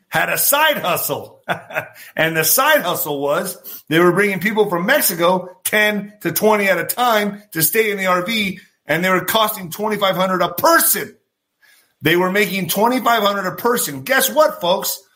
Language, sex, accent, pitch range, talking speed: English, male, American, 175-260 Hz, 165 wpm